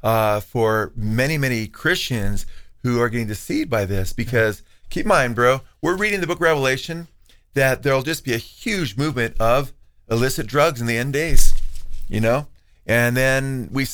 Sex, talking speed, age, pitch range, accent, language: male, 170 wpm, 40-59, 120-150 Hz, American, English